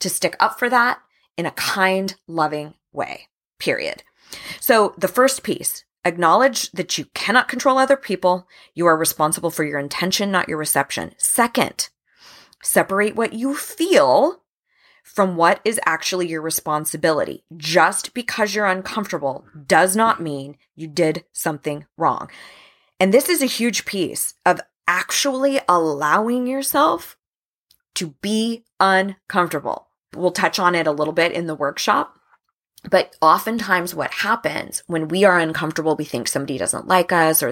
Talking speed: 145 wpm